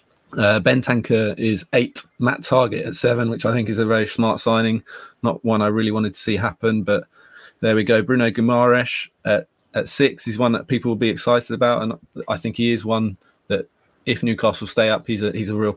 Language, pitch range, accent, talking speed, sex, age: English, 95-115 Hz, British, 220 wpm, male, 20-39